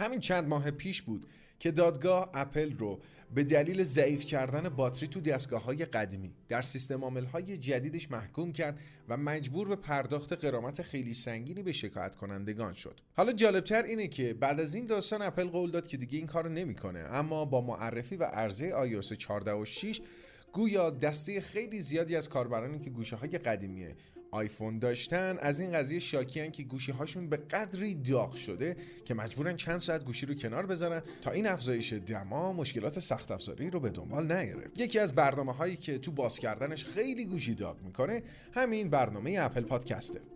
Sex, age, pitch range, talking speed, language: male, 30-49, 125-175 Hz, 170 wpm, Persian